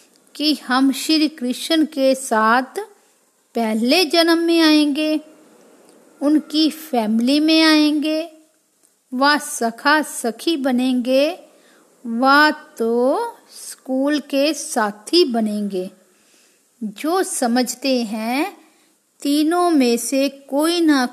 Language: Hindi